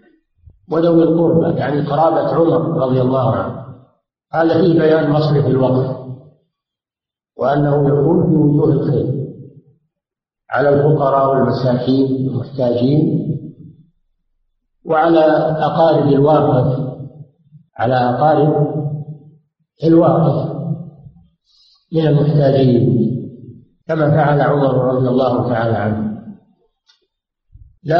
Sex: male